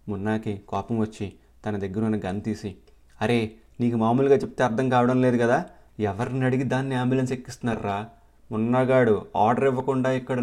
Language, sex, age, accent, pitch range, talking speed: Telugu, male, 30-49, native, 100-115 Hz, 145 wpm